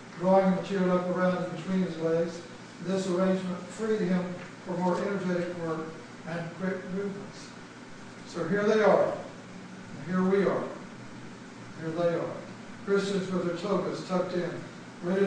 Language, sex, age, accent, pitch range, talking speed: English, male, 60-79, American, 175-200 Hz, 150 wpm